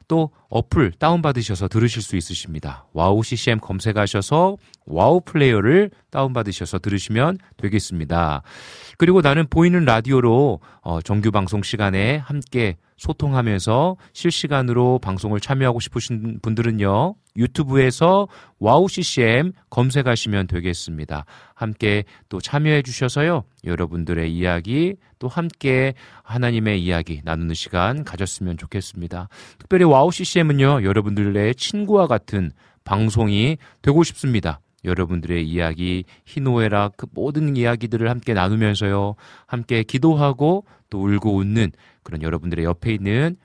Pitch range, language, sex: 95-140 Hz, Korean, male